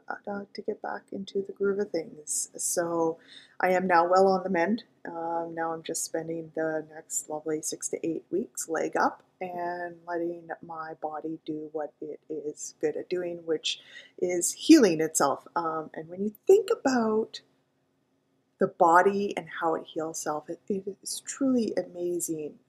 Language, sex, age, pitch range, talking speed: English, female, 20-39, 160-185 Hz, 165 wpm